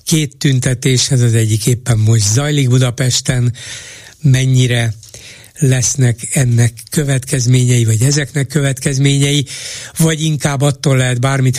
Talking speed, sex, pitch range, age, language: 110 wpm, male, 120-140 Hz, 60-79, Hungarian